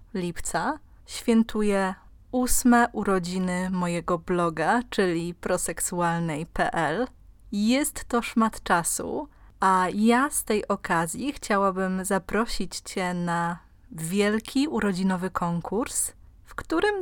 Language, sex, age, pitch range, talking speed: Polish, female, 20-39, 185-230 Hz, 90 wpm